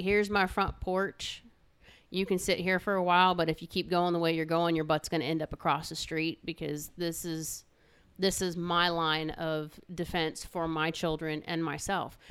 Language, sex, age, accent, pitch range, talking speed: English, female, 30-49, American, 165-195 Hz, 210 wpm